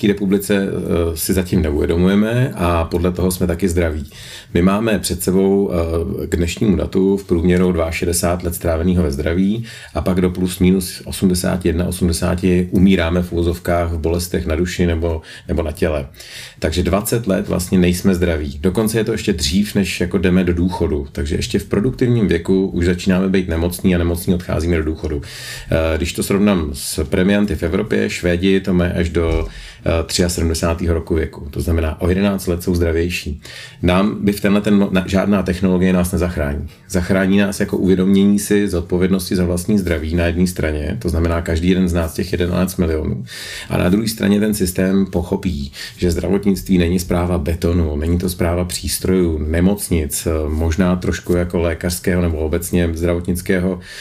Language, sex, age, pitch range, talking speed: Czech, male, 40-59, 85-95 Hz, 160 wpm